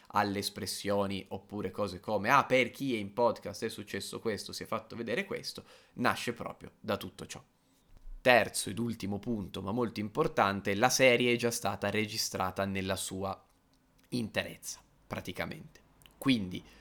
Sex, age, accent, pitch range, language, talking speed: male, 20-39, native, 95-110 Hz, Italian, 150 wpm